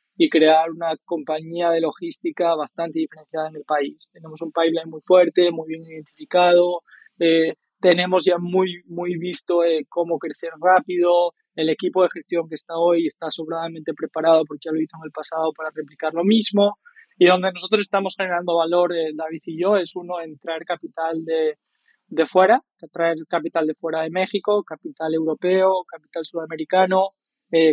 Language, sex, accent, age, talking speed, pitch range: Spanish, male, Spanish, 20-39, 170 wpm, 165-185 Hz